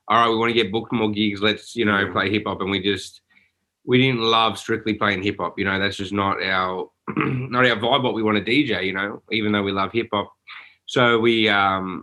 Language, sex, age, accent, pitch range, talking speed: English, male, 20-39, Australian, 100-120 Hz, 250 wpm